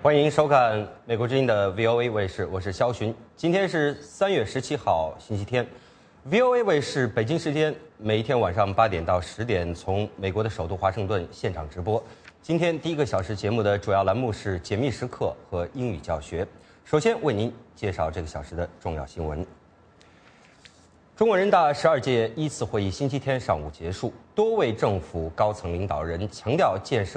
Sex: male